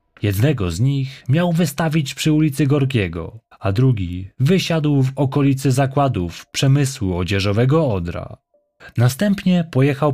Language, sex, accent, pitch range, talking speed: Polish, male, native, 105-145 Hz, 110 wpm